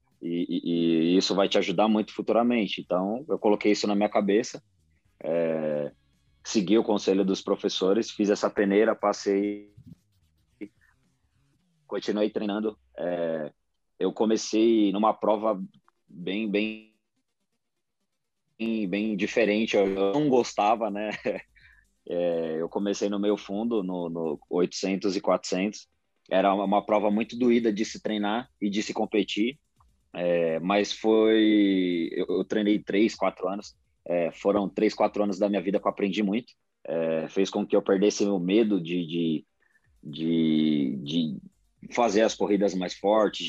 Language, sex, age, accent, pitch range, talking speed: Portuguese, male, 20-39, Brazilian, 95-110 Hz, 140 wpm